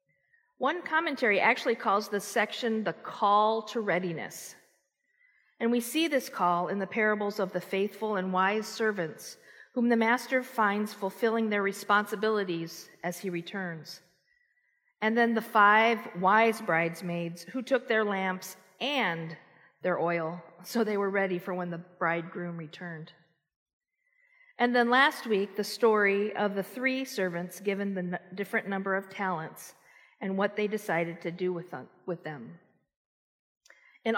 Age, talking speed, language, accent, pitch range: 40-59, 145 wpm, English, American, 180-245 Hz